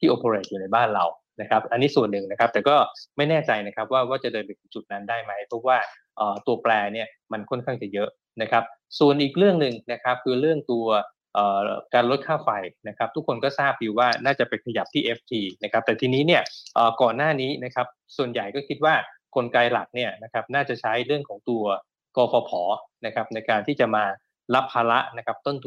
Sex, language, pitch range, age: male, Thai, 110-140 Hz, 20-39